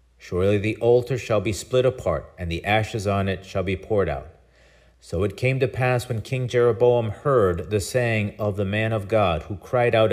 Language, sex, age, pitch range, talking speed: English, male, 40-59, 85-120 Hz, 205 wpm